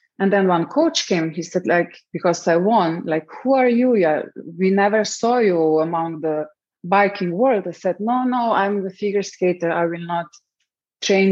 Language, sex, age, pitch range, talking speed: English, female, 20-39, 165-215 Hz, 185 wpm